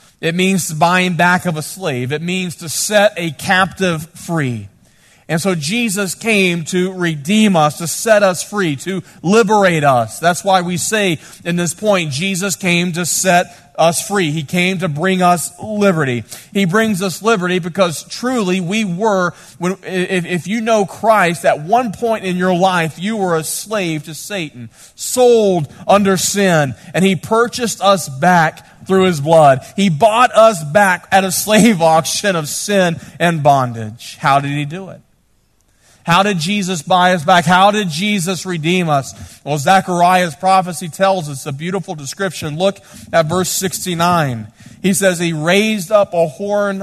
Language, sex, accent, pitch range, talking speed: English, male, American, 160-195 Hz, 165 wpm